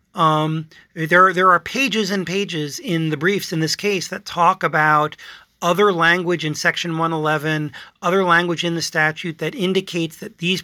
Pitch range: 155-185 Hz